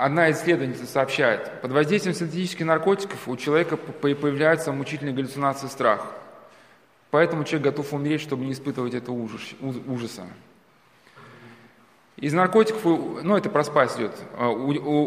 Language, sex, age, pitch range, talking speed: Russian, male, 20-39, 130-155 Hz, 120 wpm